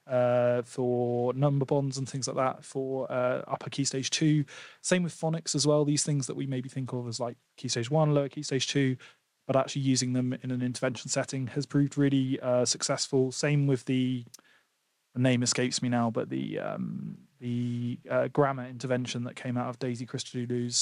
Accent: British